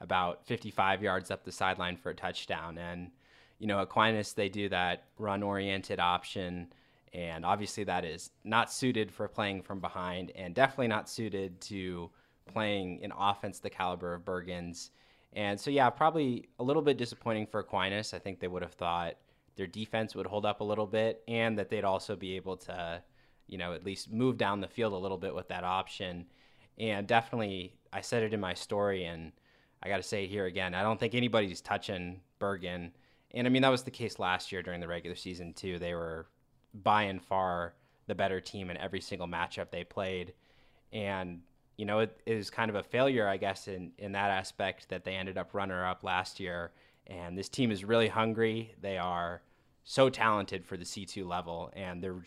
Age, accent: 20-39, American